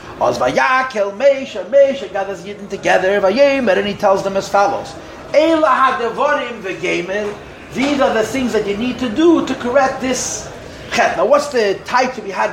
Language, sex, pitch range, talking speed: English, male, 205-275 Hz, 170 wpm